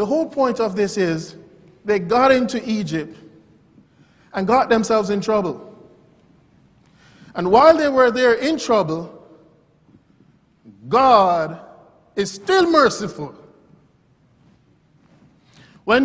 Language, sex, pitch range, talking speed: English, male, 165-235 Hz, 100 wpm